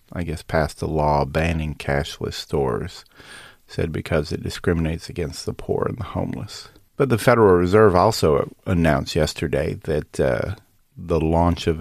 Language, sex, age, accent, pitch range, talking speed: English, male, 40-59, American, 80-110 Hz, 150 wpm